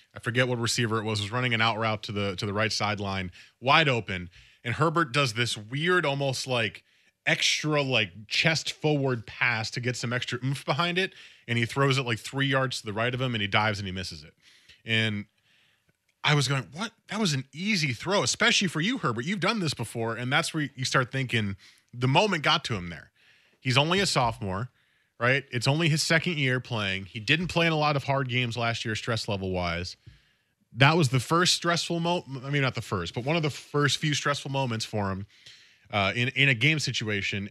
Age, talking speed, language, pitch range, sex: 20-39, 220 wpm, English, 110-145 Hz, male